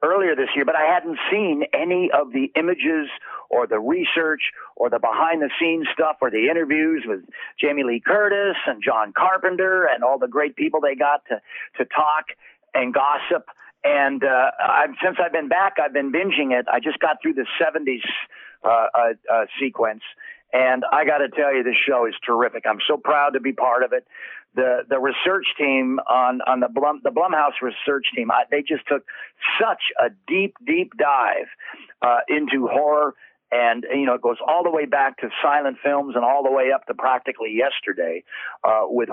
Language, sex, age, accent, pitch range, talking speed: English, male, 50-69, American, 135-195 Hz, 195 wpm